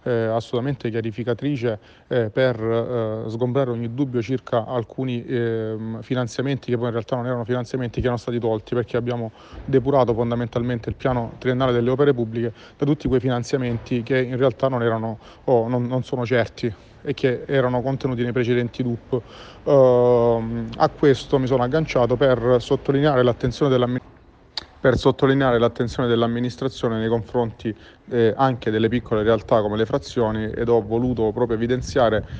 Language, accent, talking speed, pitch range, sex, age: Italian, native, 145 wpm, 115-130 Hz, male, 40-59